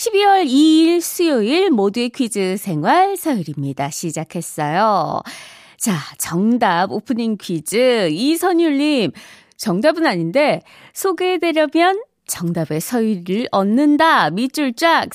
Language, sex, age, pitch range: Korean, female, 20-39, 190-315 Hz